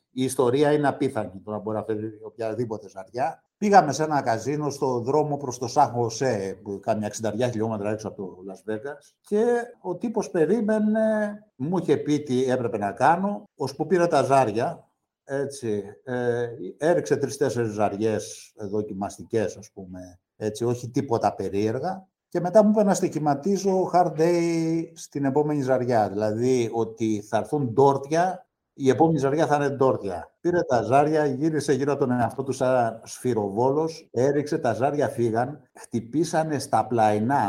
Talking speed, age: 155 wpm, 60-79